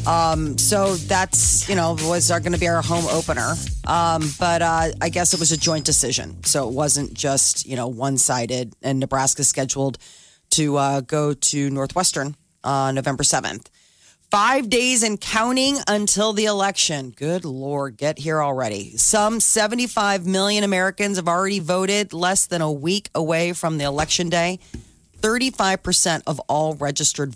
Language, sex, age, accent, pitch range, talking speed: English, female, 40-59, American, 140-185 Hz, 160 wpm